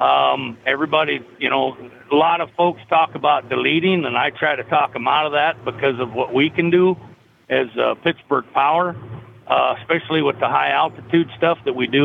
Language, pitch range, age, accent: English, 130-170 Hz, 50-69, American